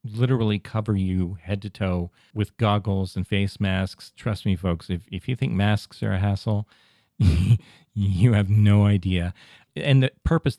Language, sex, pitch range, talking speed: English, male, 95-115 Hz, 165 wpm